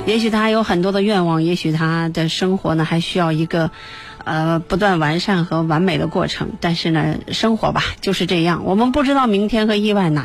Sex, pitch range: female, 165-205 Hz